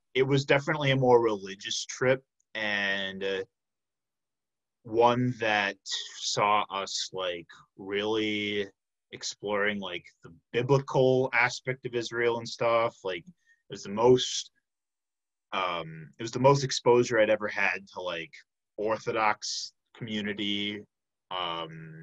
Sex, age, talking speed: male, 20-39, 115 wpm